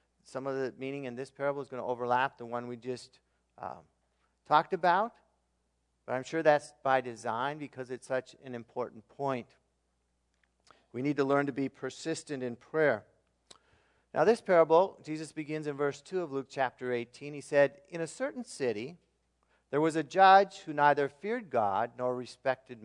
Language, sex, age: English, male, 50-69